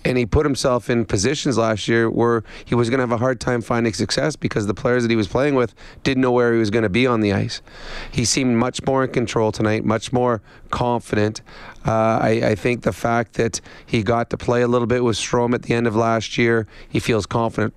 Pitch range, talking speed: 110-125 Hz, 245 wpm